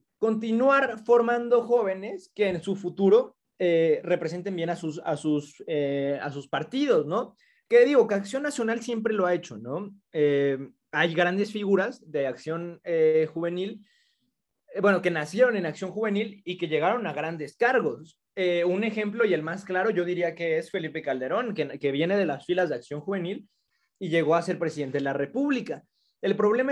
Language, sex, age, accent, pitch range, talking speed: Spanish, male, 20-39, Mexican, 165-215 Hz, 175 wpm